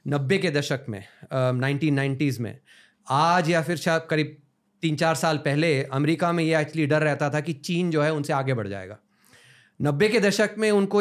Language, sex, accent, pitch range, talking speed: Hindi, male, native, 135-185 Hz, 190 wpm